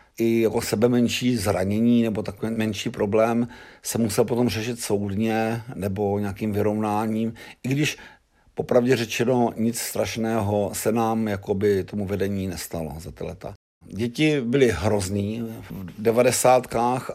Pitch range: 100-125 Hz